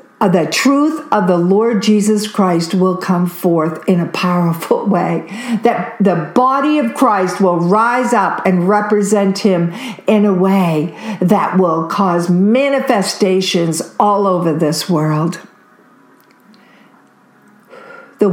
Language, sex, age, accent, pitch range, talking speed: English, female, 60-79, American, 185-230 Hz, 120 wpm